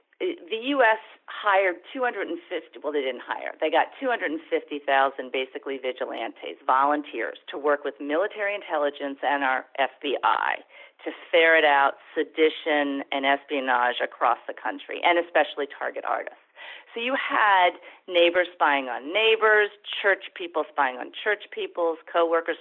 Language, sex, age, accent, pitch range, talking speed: English, female, 40-59, American, 145-225 Hz, 130 wpm